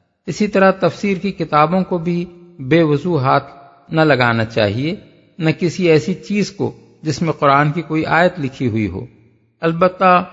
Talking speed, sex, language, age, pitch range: 165 wpm, male, Urdu, 50-69, 135-180 Hz